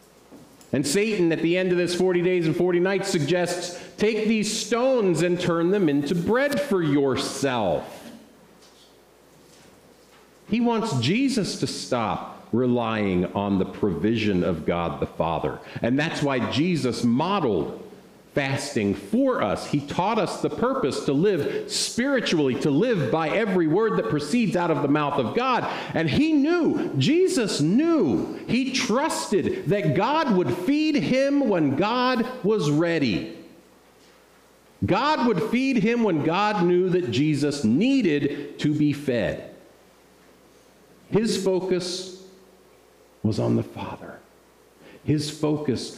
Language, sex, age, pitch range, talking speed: English, male, 50-69, 140-215 Hz, 135 wpm